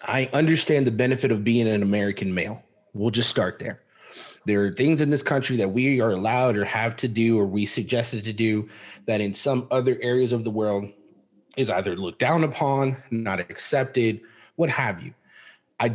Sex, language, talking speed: male, English, 190 wpm